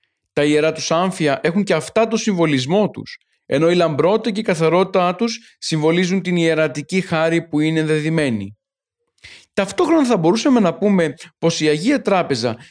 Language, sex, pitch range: Greek, male, 150-205 Hz